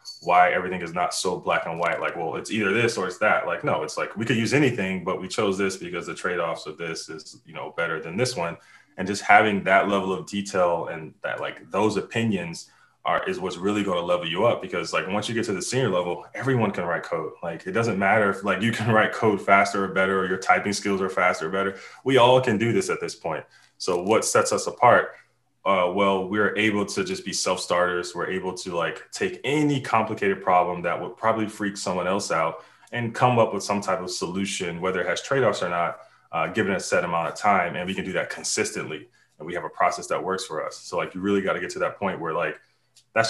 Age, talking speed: 20-39, 250 wpm